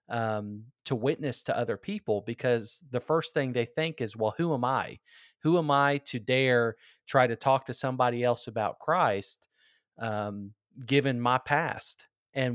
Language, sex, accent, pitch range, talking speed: English, male, American, 120-155 Hz, 165 wpm